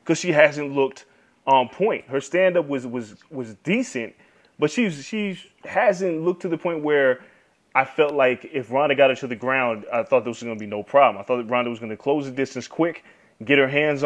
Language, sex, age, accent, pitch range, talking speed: English, male, 20-39, American, 130-170 Hz, 230 wpm